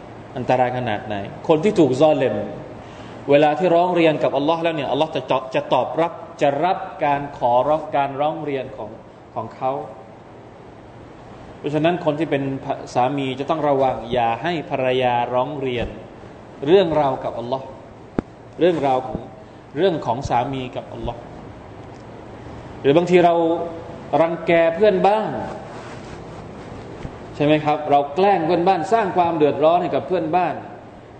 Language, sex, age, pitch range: Thai, male, 20-39, 125-165 Hz